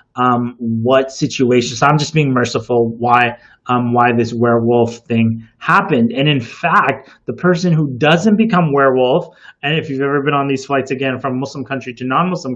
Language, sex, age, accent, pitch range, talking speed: English, male, 30-49, American, 125-170 Hz, 185 wpm